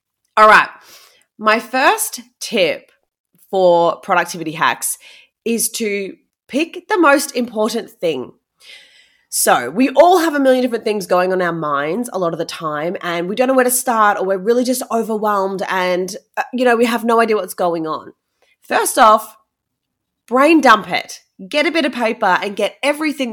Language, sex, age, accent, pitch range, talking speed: English, female, 20-39, Australian, 185-245 Hz, 175 wpm